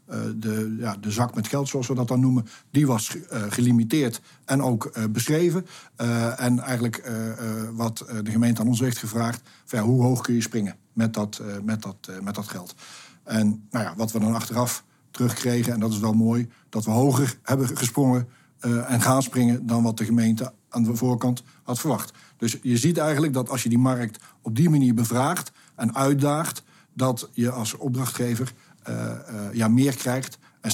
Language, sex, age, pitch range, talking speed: Dutch, male, 60-79, 115-135 Hz, 185 wpm